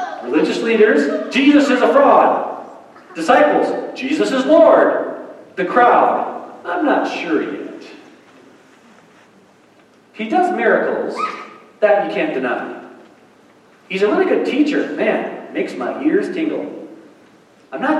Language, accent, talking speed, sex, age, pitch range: English, American, 115 wpm, male, 40-59, 220-315 Hz